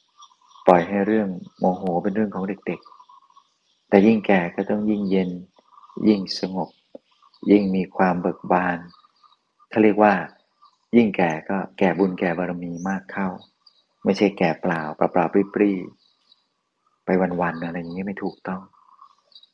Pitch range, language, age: 90-105 Hz, Thai, 30-49